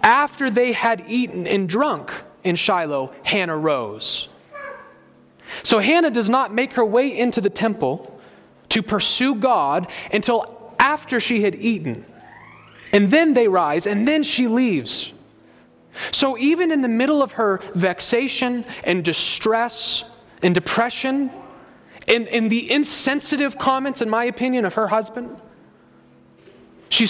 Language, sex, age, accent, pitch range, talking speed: English, male, 30-49, American, 180-245 Hz, 135 wpm